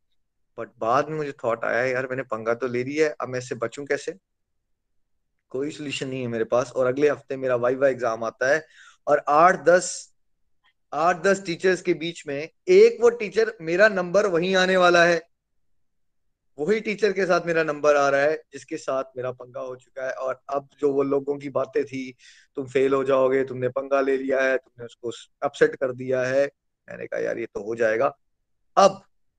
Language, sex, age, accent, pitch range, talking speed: Hindi, male, 20-39, native, 130-175 Hz, 200 wpm